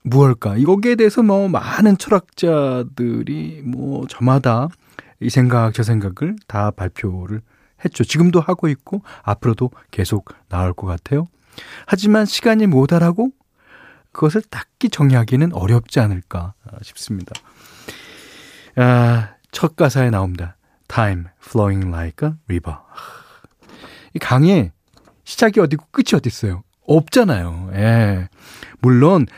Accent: native